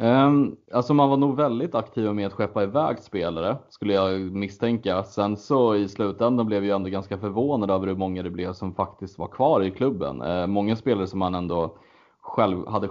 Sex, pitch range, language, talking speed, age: male, 95-110 Hz, Swedish, 195 wpm, 30-49